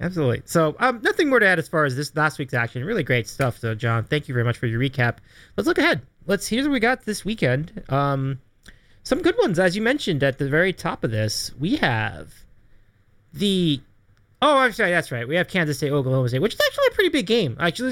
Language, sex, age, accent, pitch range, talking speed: English, male, 30-49, American, 120-180 Hz, 240 wpm